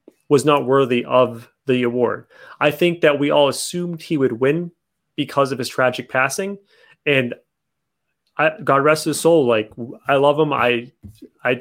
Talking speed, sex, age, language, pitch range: 165 wpm, male, 30-49, English, 125-150 Hz